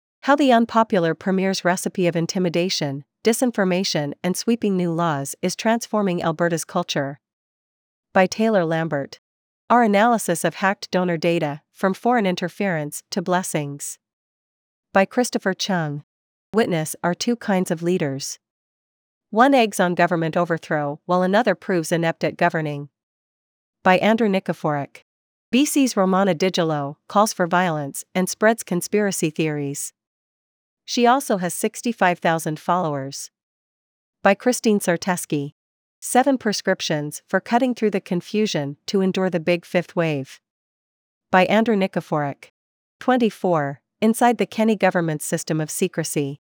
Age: 40-59